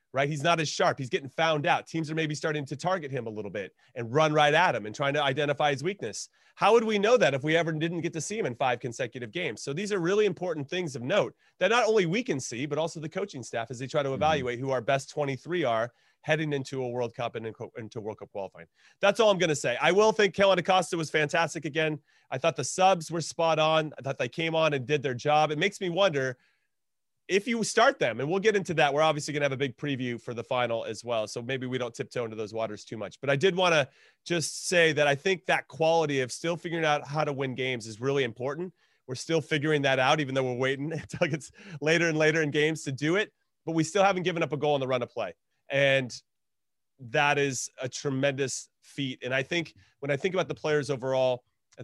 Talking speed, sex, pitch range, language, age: 260 wpm, male, 125-160 Hz, English, 30-49